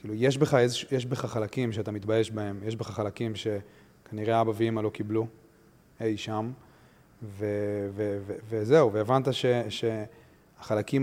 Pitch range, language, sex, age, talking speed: 105-120 Hz, Hebrew, male, 30-49, 135 wpm